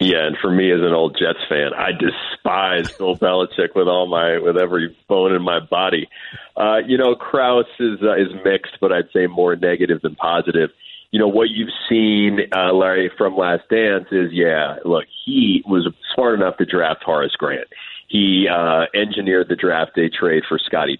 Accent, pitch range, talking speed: American, 90-120 Hz, 190 wpm